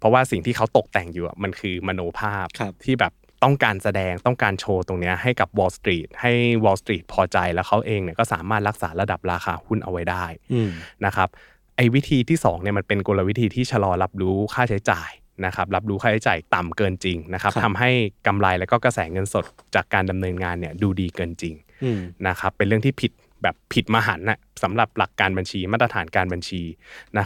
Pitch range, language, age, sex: 95-115 Hz, Thai, 20-39, male